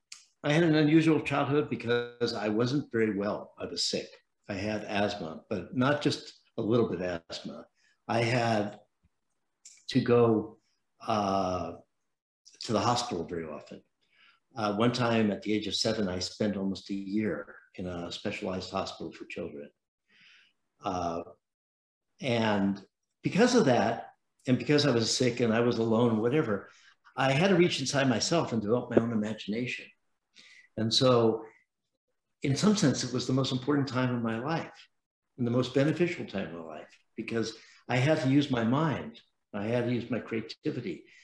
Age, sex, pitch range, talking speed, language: 60-79, male, 105-135 Hz, 165 wpm, Vietnamese